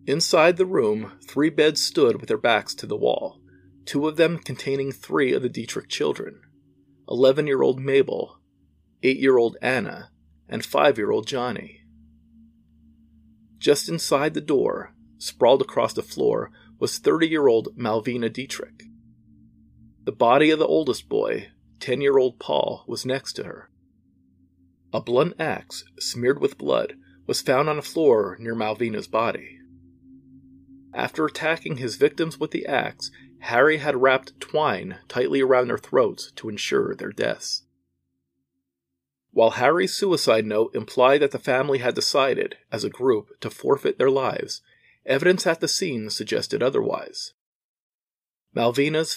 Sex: male